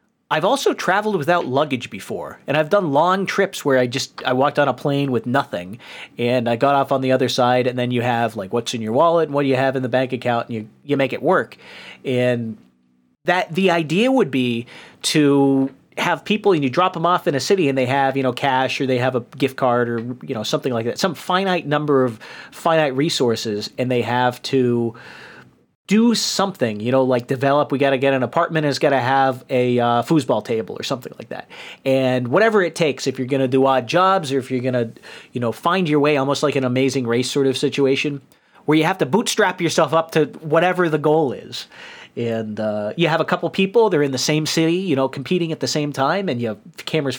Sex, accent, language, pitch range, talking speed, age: male, American, English, 125-160 Hz, 235 wpm, 40-59